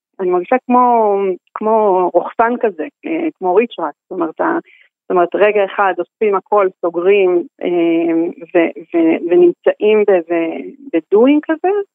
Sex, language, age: female, Hebrew, 40-59